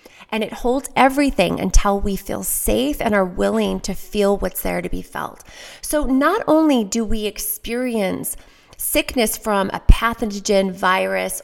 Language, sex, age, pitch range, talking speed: English, female, 30-49, 180-245 Hz, 150 wpm